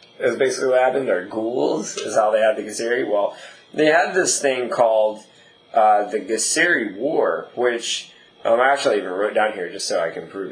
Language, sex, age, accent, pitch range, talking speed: English, male, 20-39, American, 105-125 Hz, 205 wpm